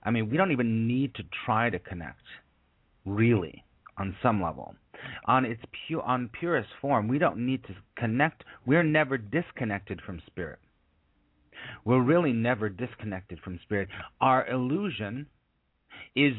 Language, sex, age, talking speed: English, male, 40-59, 145 wpm